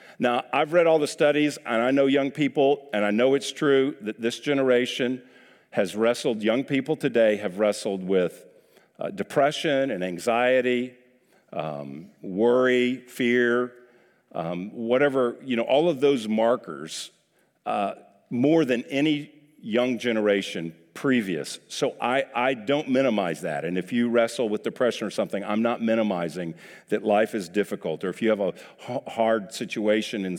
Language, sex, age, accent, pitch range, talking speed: English, male, 50-69, American, 100-130 Hz, 155 wpm